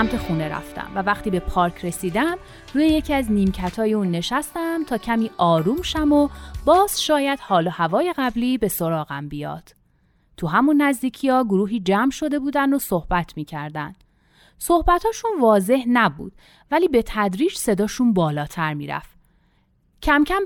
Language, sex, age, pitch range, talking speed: Persian, female, 30-49, 185-285 Hz, 155 wpm